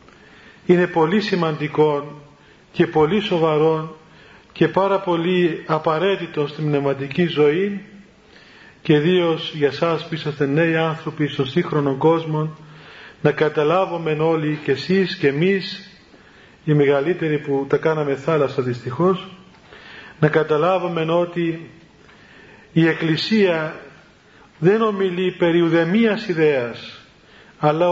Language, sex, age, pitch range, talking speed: Greek, male, 40-59, 150-180 Hz, 105 wpm